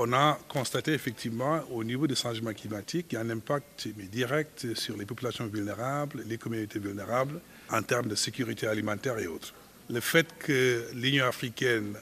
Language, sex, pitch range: French, male, 110-135 Hz